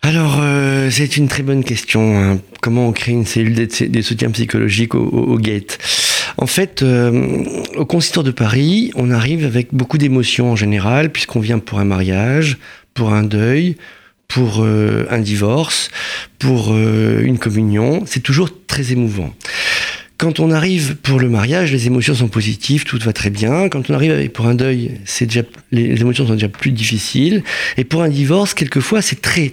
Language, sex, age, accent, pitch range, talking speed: French, male, 40-59, French, 115-155 Hz, 185 wpm